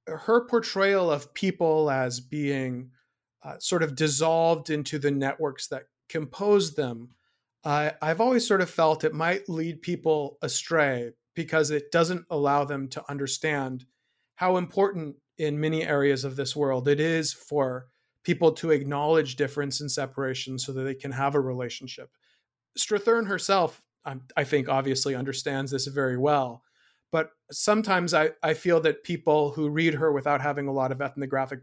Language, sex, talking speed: English, male, 155 wpm